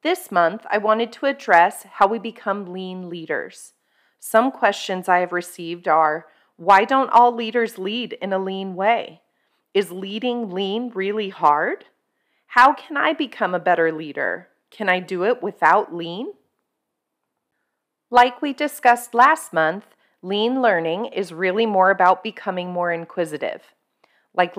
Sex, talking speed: female, 145 wpm